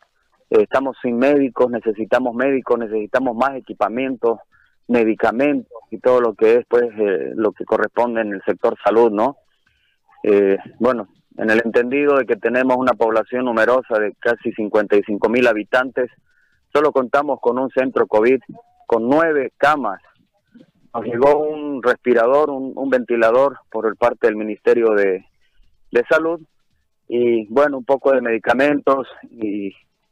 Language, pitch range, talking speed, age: Spanish, 115-140 Hz, 140 wpm, 30-49